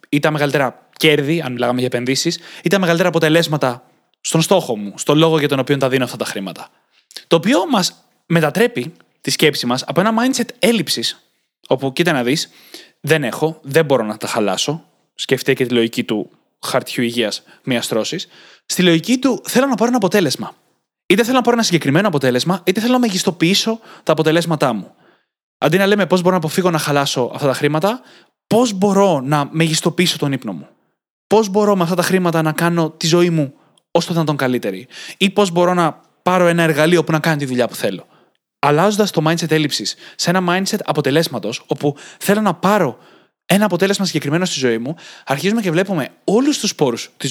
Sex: male